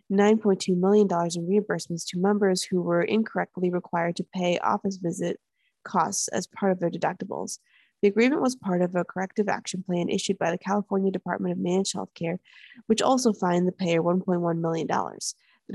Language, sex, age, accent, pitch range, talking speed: English, female, 20-39, American, 175-205 Hz, 170 wpm